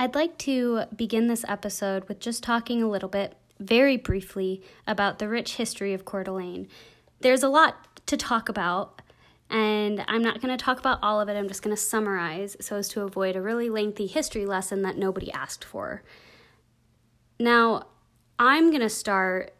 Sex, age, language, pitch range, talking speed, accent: female, 20-39, English, 190-225 Hz, 185 wpm, American